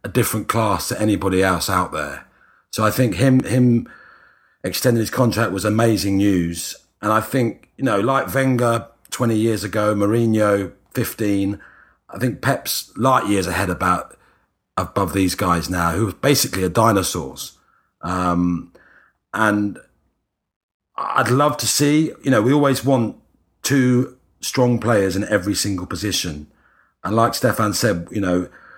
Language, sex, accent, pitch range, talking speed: English, male, British, 95-125 Hz, 150 wpm